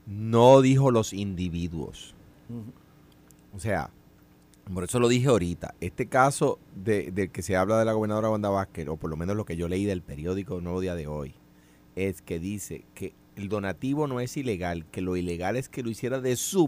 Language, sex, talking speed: Spanish, male, 200 wpm